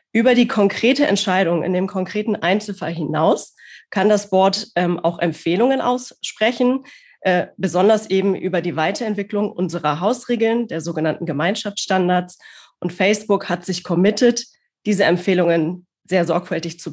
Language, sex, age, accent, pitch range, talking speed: German, female, 20-39, German, 175-210 Hz, 130 wpm